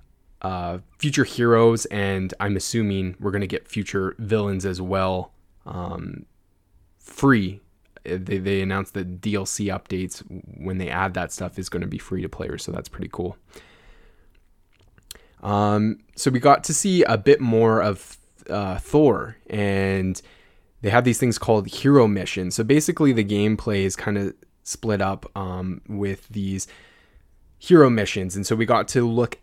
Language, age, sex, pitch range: English, 20-39, male, 95-115 Hz